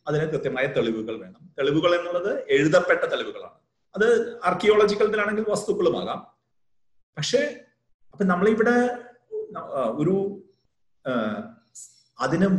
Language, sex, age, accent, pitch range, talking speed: Malayalam, male, 30-49, native, 145-195 Hz, 75 wpm